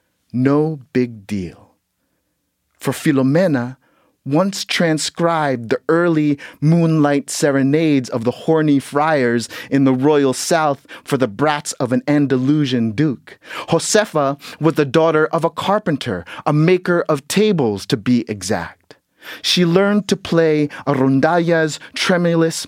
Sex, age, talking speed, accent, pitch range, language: male, 30-49, 120 wpm, American, 130-165 Hz, English